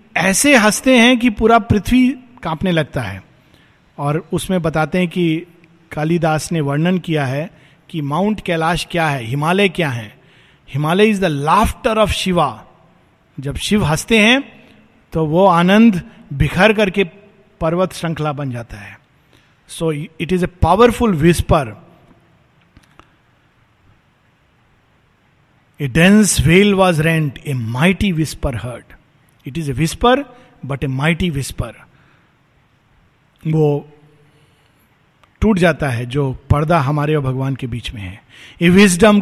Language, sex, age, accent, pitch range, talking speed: Hindi, male, 50-69, native, 145-185 Hz, 130 wpm